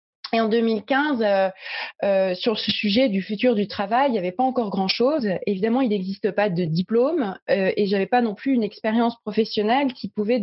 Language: French